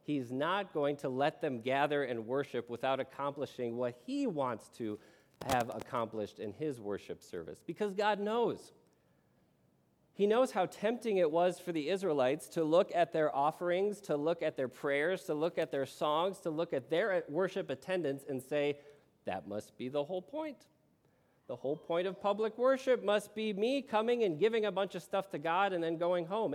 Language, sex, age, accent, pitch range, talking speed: English, male, 40-59, American, 125-180 Hz, 190 wpm